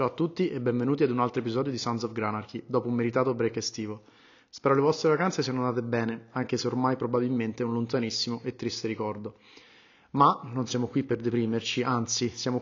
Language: Italian